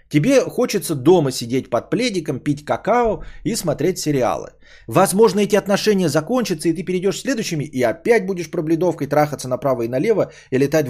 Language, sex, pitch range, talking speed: Bulgarian, male, 120-200 Hz, 160 wpm